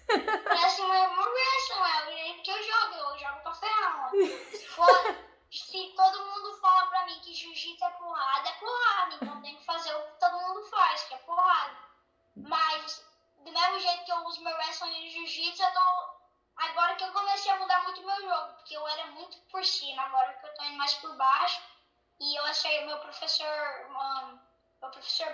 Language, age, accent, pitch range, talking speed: Portuguese, 10-29, Brazilian, 300-355 Hz, 195 wpm